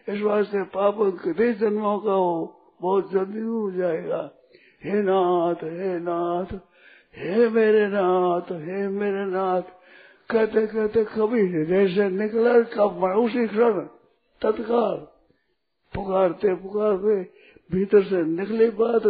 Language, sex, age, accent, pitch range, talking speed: Hindi, male, 60-79, native, 185-220 Hz, 105 wpm